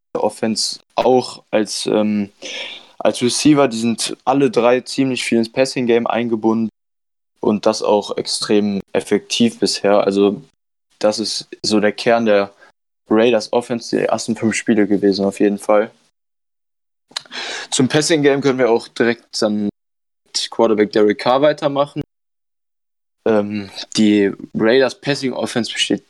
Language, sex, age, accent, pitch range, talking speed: German, male, 10-29, German, 105-120 Hz, 135 wpm